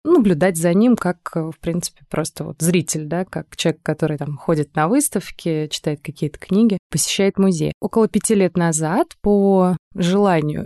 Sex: female